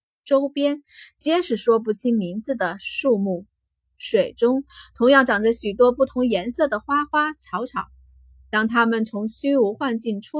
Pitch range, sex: 195-275 Hz, female